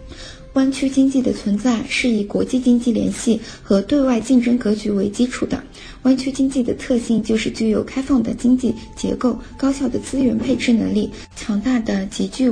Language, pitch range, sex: Chinese, 220-255 Hz, female